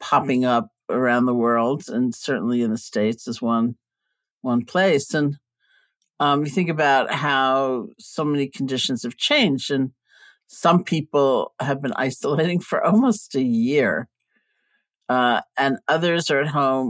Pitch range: 130-175 Hz